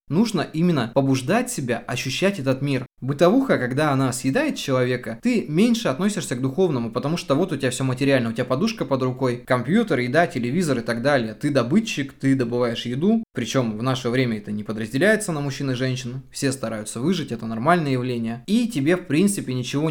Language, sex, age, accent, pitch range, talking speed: Russian, male, 20-39, native, 125-170 Hz, 185 wpm